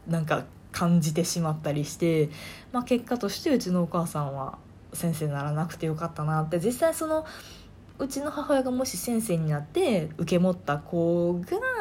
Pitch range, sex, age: 155-215 Hz, female, 20-39